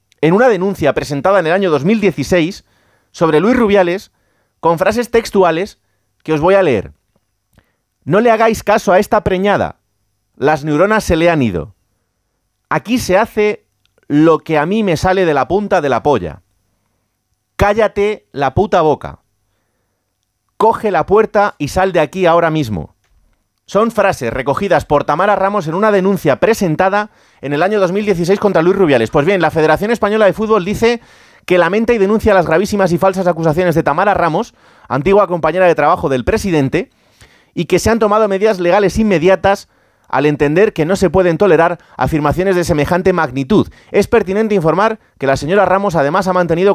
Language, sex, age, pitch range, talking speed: Spanish, male, 30-49, 140-205 Hz, 170 wpm